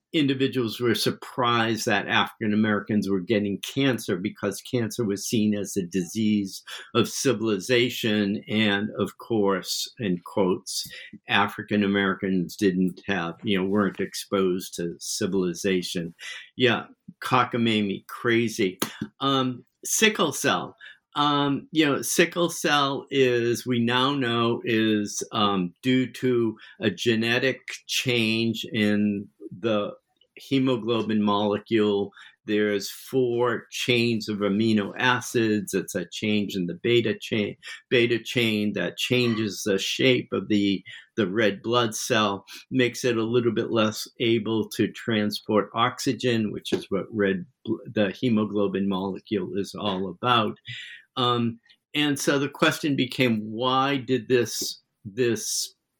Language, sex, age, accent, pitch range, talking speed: English, male, 50-69, American, 100-125 Hz, 120 wpm